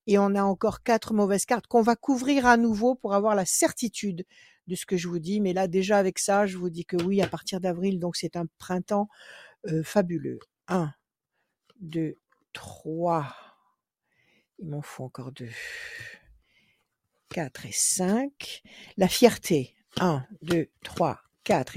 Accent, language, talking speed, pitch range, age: French, French, 160 wpm, 170-205 Hz, 60-79